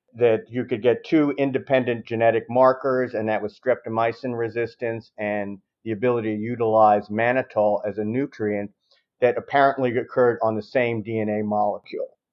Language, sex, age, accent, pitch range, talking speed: English, male, 50-69, American, 105-125 Hz, 145 wpm